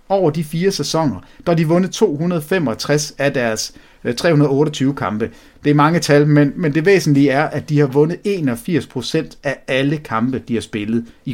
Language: English